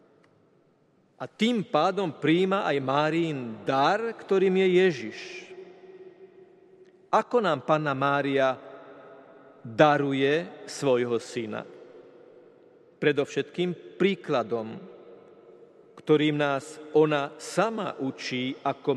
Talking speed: 80 wpm